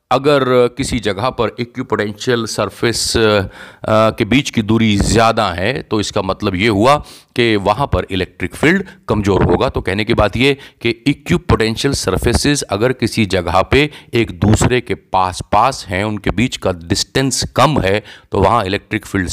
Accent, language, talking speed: native, Hindi, 160 wpm